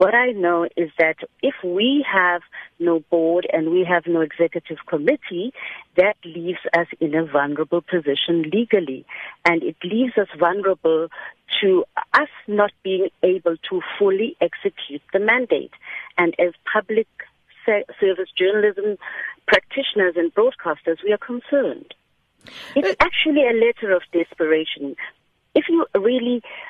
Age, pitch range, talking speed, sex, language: 50-69, 165-255 Hz, 135 wpm, female, English